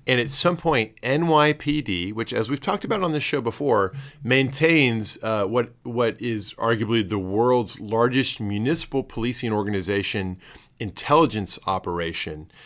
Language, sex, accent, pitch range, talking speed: English, male, American, 100-135 Hz, 135 wpm